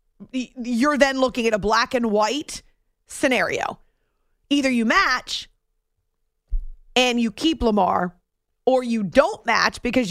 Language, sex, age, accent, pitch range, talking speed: English, female, 30-49, American, 200-280 Hz, 125 wpm